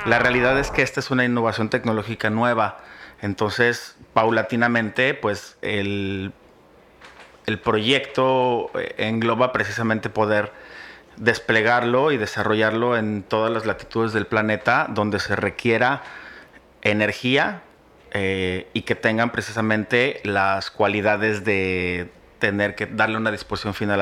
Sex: male